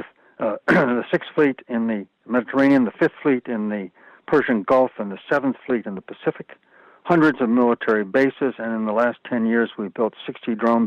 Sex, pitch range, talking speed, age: male, 110-130 Hz, 195 wpm, 60-79